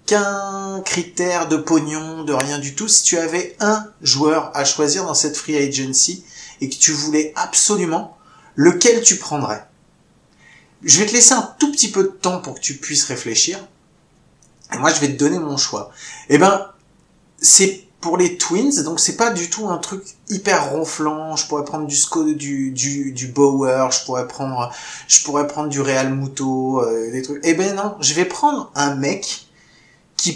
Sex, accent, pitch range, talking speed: male, French, 140-190 Hz, 190 wpm